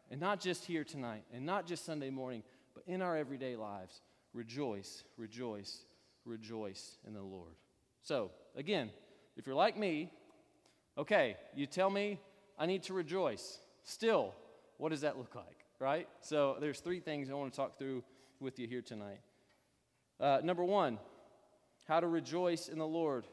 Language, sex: English, male